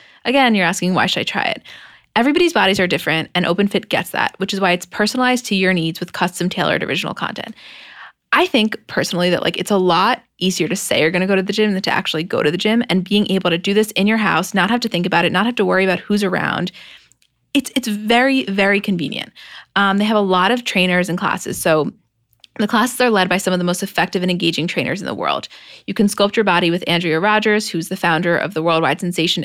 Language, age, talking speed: English, 20-39, 245 wpm